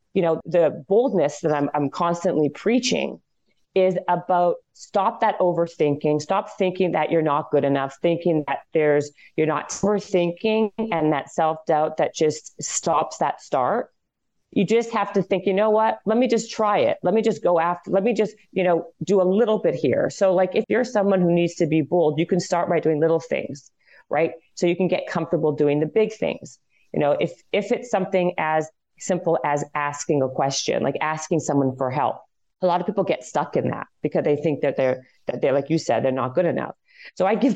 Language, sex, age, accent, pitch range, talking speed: English, female, 40-59, American, 155-195 Hz, 210 wpm